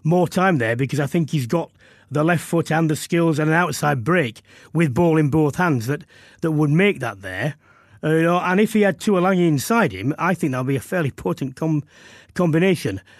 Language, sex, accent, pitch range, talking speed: English, male, British, 145-190 Hz, 225 wpm